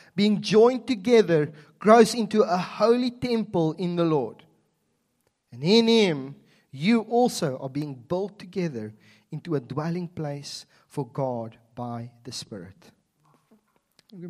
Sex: male